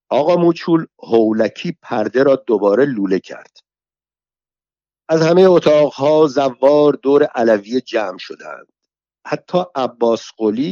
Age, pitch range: 60-79, 110-155 Hz